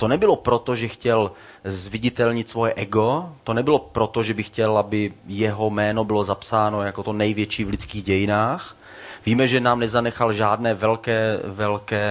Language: Czech